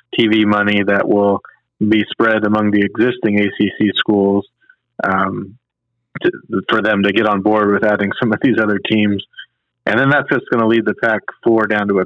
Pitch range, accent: 105-115 Hz, American